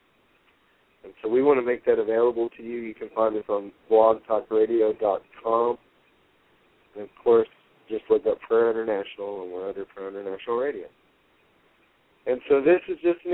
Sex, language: male, English